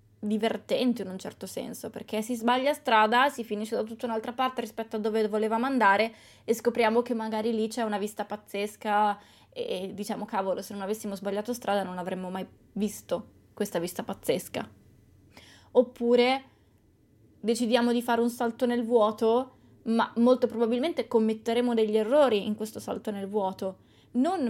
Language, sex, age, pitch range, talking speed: Italian, female, 20-39, 200-235 Hz, 155 wpm